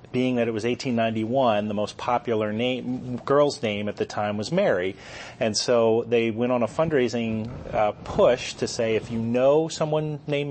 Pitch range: 110-125 Hz